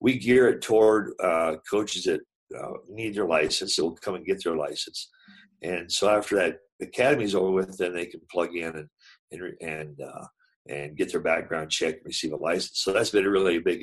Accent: American